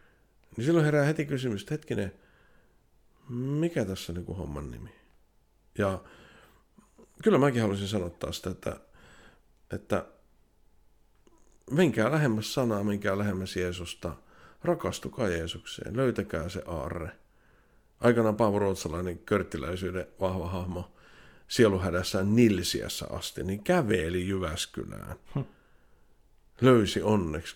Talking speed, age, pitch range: 100 wpm, 50-69, 85-110 Hz